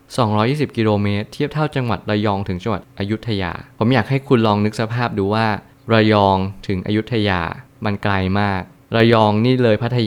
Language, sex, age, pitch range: Thai, male, 20-39, 100-125 Hz